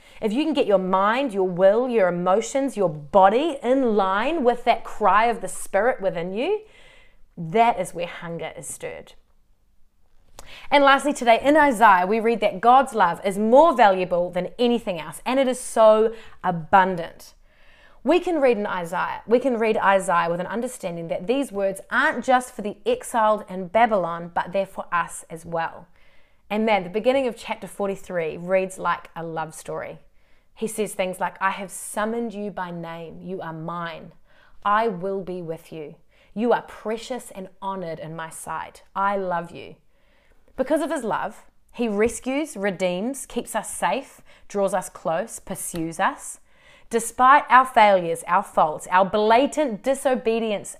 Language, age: English, 30-49